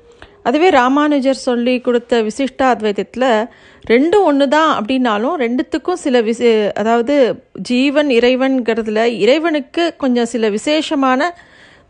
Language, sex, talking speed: Tamil, female, 100 wpm